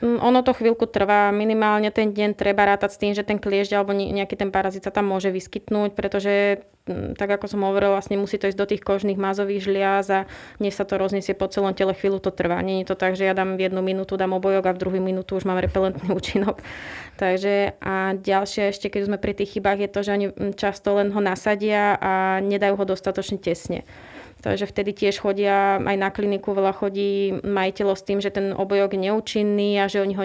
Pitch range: 195-205 Hz